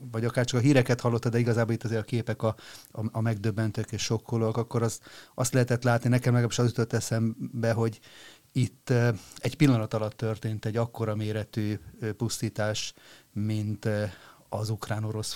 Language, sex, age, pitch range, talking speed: Hungarian, male, 30-49, 110-120 Hz, 160 wpm